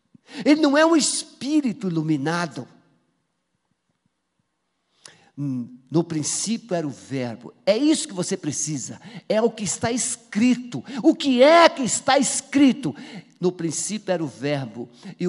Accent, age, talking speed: Brazilian, 50-69, 130 wpm